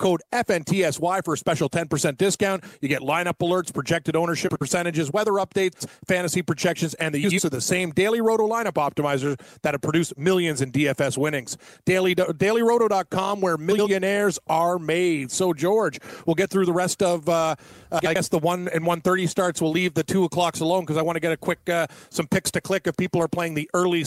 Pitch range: 155-185 Hz